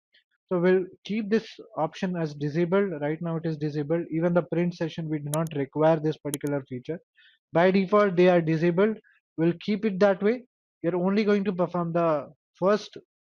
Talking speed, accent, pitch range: 180 wpm, Indian, 150-185 Hz